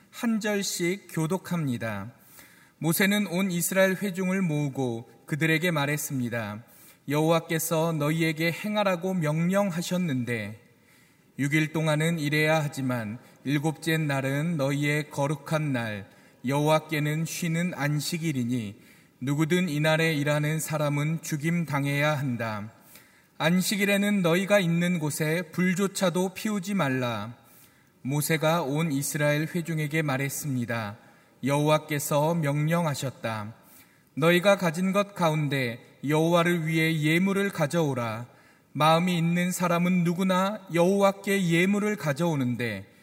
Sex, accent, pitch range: male, native, 140-175 Hz